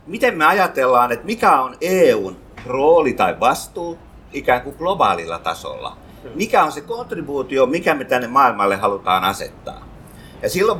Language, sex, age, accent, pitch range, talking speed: Finnish, male, 50-69, native, 140-215 Hz, 145 wpm